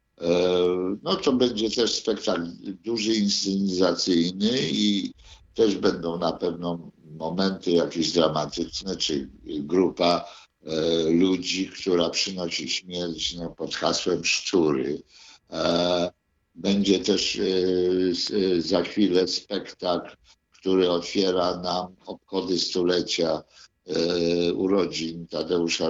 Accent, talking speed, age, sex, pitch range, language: native, 95 wpm, 50-69, male, 85-110 Hz, Polish